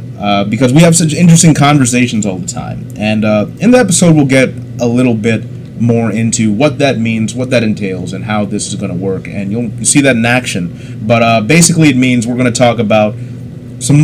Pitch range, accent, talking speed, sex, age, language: 110-135 Hz, American, 225 wpm, male, 30-49, English